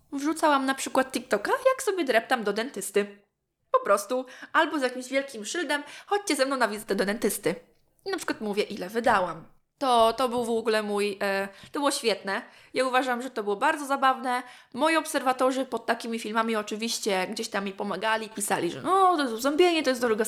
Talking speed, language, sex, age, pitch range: 190 wpm, Polish, female, 20-39, 220-285 Hz